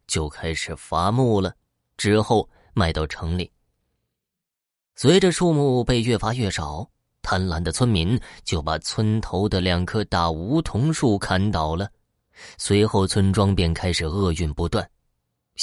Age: 20-39